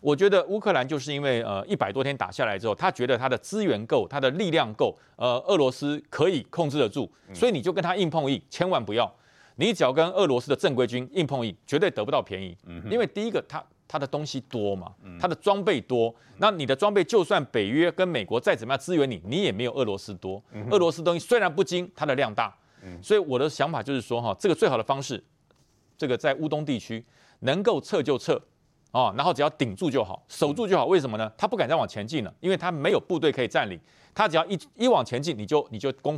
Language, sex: Chinese, male